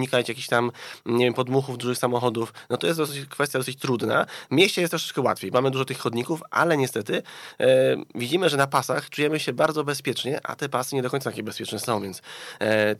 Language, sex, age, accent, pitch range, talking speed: Polish, male, 20-39, native, 110-140 Hz, 210 wpm